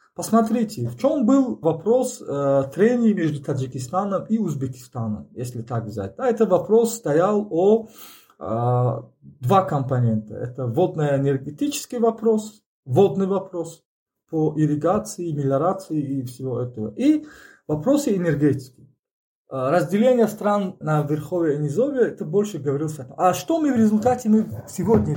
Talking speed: 130 wpm